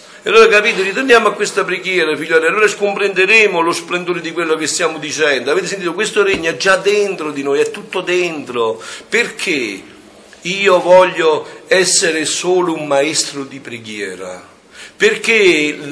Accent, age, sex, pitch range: native, 50-69, male, 155-205 Hz